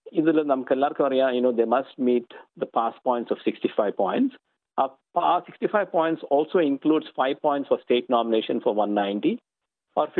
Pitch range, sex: 115-155 Hz, male